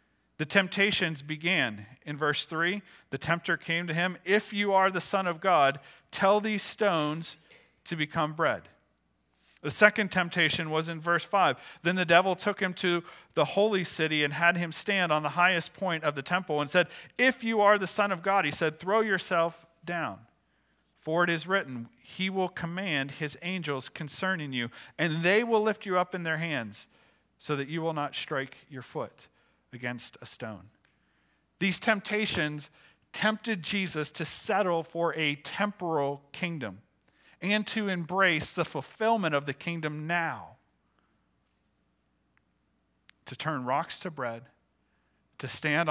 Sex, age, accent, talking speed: male, 40-59, American, 160 wpm